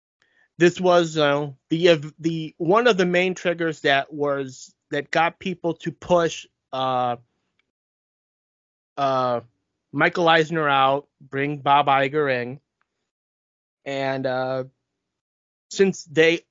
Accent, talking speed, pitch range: American, 115 wpm, 140-175 Hz